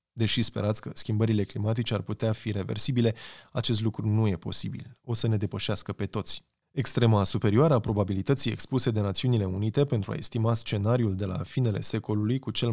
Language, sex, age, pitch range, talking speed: Romanian, male, 20-39, 105-125 Hz, 180 wpm